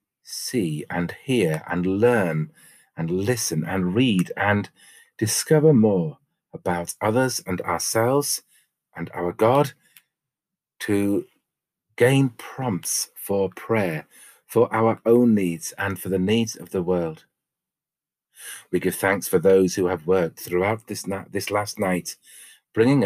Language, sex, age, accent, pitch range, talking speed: English, male, 40-59, British, 95-120 Hz, 130 wpm